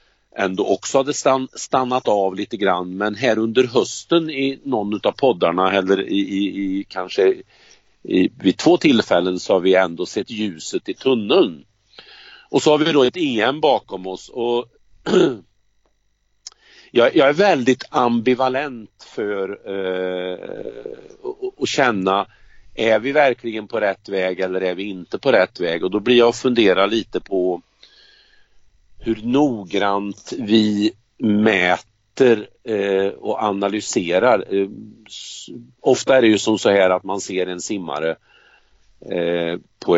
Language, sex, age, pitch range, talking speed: Swedish, male, 50-69, 95-130 Hz, 135 wpm